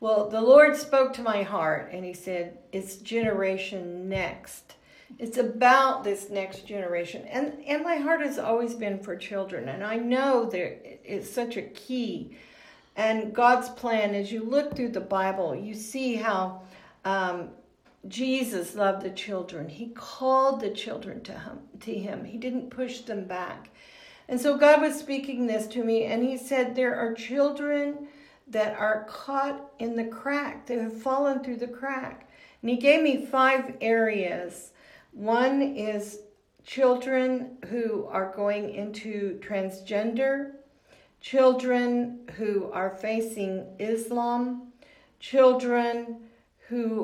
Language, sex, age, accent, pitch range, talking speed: English, female, 50-69, American, 205-260 Hz, 145 wpm